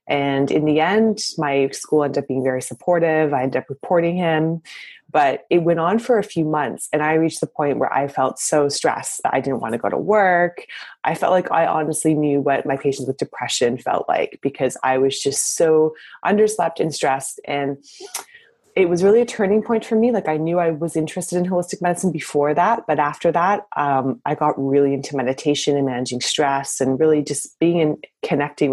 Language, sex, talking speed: English, female, 210 wpm